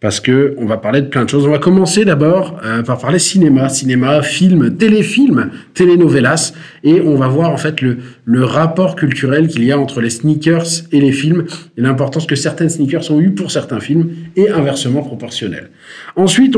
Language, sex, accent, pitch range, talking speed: French, male, French, 125-170 Hz, 195 wpm